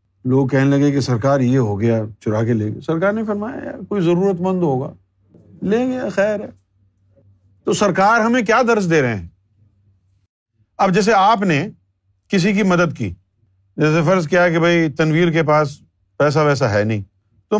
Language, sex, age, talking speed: Urdu, male, 50-69, 180 wpm